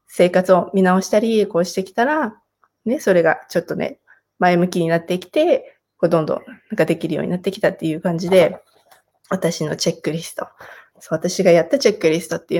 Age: 20-39